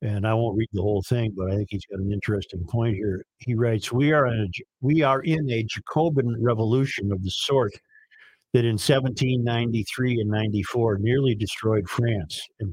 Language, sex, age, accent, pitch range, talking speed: English, male, 50-69, American, 105-130 Hz, 170 wpm